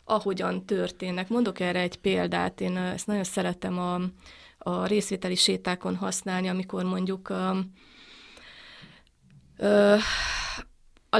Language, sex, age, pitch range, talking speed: Hungarian, female, 30-49, 175-205 Hz, 100 wpm